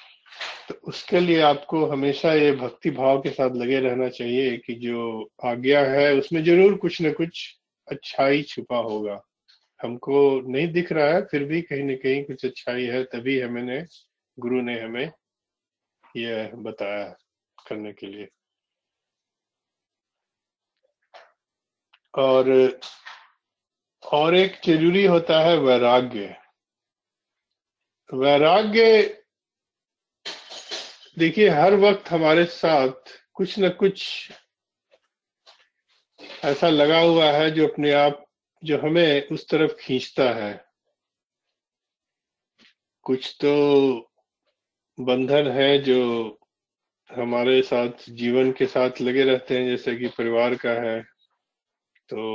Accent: native